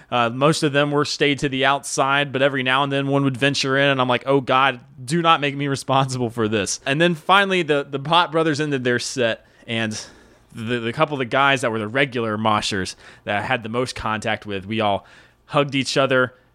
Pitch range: 110-140 Hz